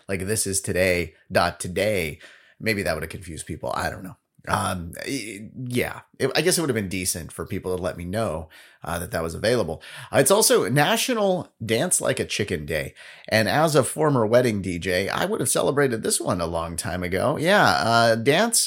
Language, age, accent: English, 30-49, American